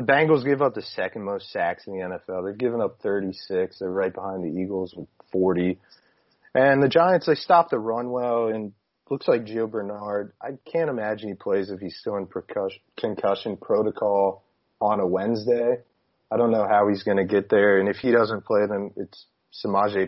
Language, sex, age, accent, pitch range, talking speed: English, male, 30-49, American, 95-110 Hz, 195 wpm